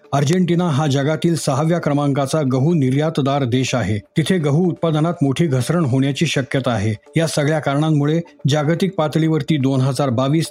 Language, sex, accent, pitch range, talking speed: Marathi, male, native, 140-165 Hz, 145 wpm